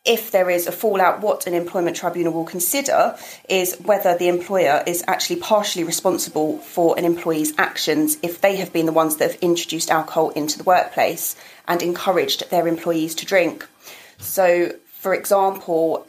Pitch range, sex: 165-190 Hz, female